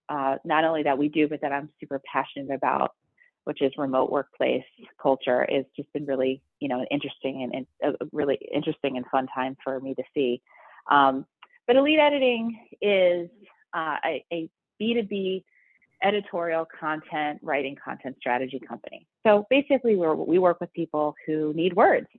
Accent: American